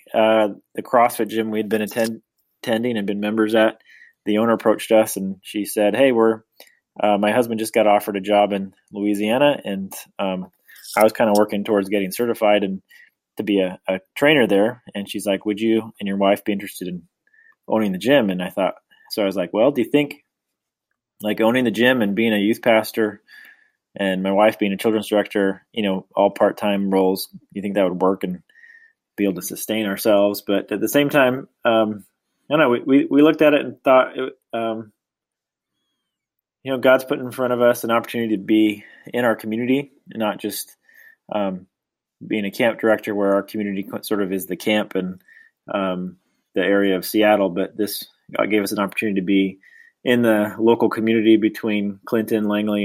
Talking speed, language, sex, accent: 195 wpm, English, male, American